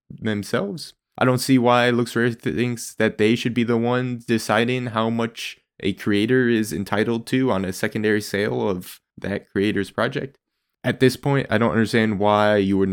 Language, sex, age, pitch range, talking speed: English, male, 20-39, 105-125 Hz, 175 wpm